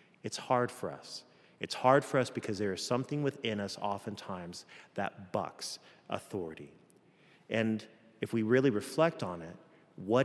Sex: male